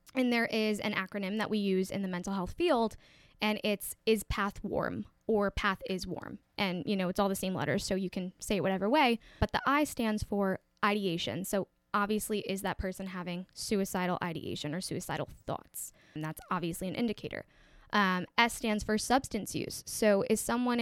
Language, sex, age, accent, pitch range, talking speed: English, female, 10-29, American, 185-220 Hz, 195 wpm